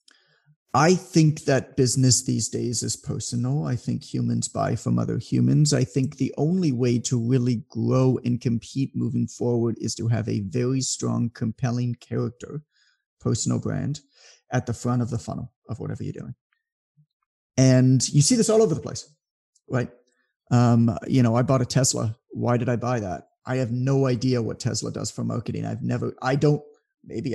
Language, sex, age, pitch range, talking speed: English, male, 30-49, 120-150 Hz, 180 wpm